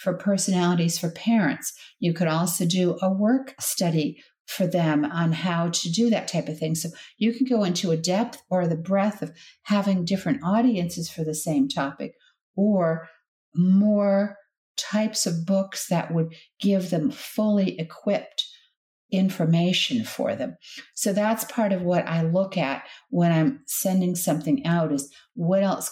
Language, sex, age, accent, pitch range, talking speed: English, female, 50-69, American, 170-215 Hz, 160 wpm